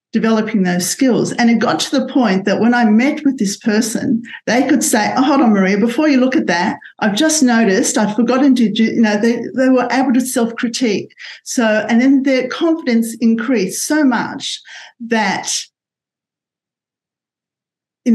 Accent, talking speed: Australian, 175 wpm